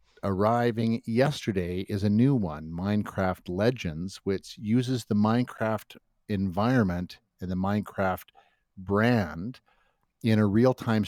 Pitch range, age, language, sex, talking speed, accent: 95-115 Hz, 50-69, English, male, 110 wpm, American